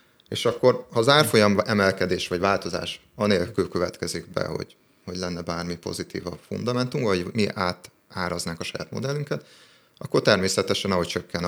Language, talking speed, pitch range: Hungarian, 145 wpm, 90-110 Hz